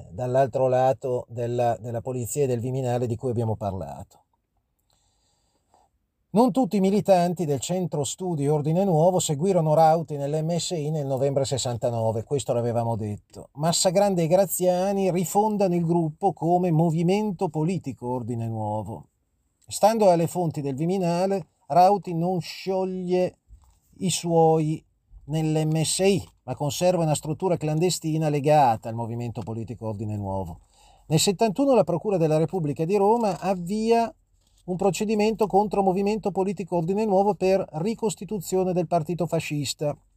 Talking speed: 125 wpm